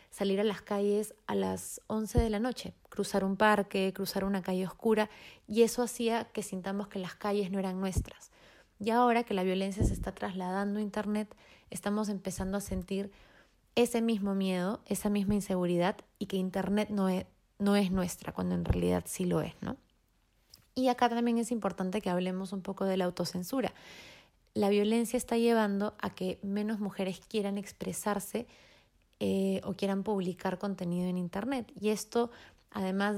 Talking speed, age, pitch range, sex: 170 wpm, 20-39, 190-215 Hz, female